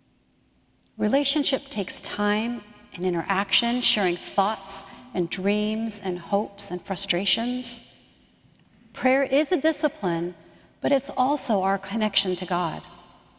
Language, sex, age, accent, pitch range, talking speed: English, female, 60-79, American, 190-250 Hz, 110 wpm